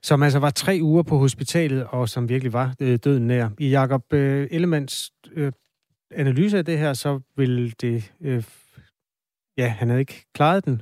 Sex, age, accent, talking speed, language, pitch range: male, 30-49, native, 185 wpm, Danish, 115-140 Hz